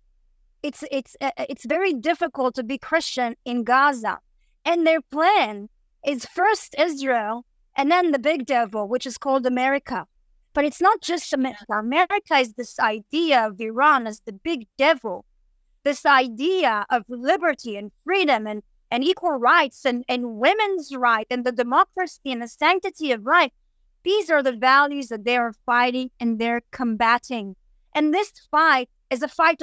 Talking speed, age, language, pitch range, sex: 160 wpm, 30-49, English, 245-320 Hz, female